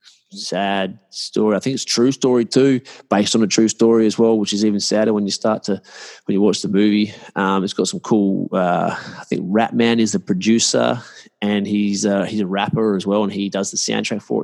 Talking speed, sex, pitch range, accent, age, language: 230 wpm, male, 95-115 Hz, Australian, 20-39, English